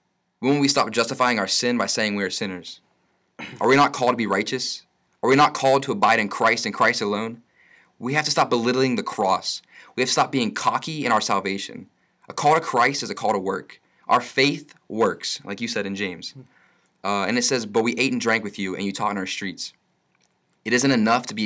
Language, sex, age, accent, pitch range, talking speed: English, male, 20-39, American, 100-130 Hz, 240 wpm